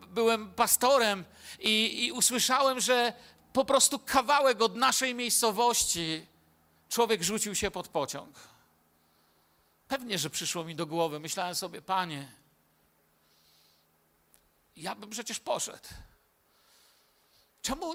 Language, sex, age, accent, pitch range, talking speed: Polish, male, 50-69, native, 180-230 Hz, 105 wpm